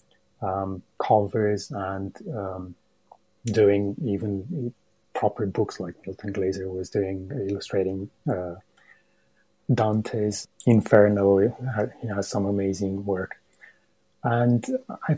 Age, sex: 30-49, male